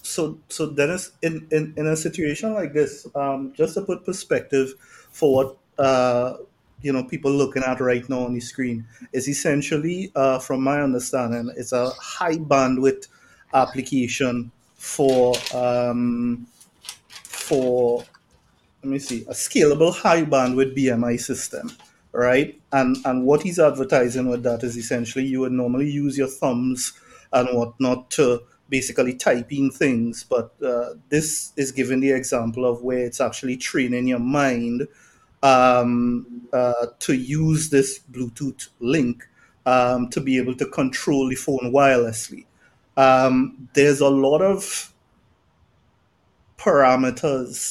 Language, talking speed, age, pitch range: English, 135 wpm, 30-49, 125-145 Hz